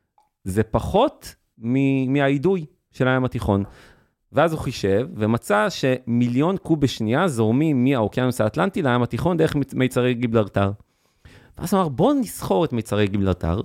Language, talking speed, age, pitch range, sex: Hebrew, 130 wpm, 30-49, 110-165 Hz, male